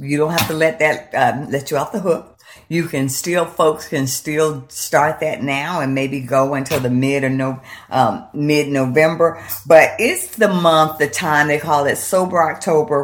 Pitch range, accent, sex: 125-160 Hz, American, female